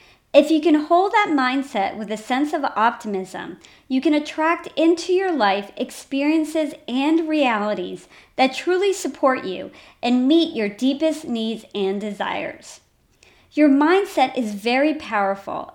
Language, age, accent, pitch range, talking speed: English, 40-59, American, 220-310 Hz, 135 wpm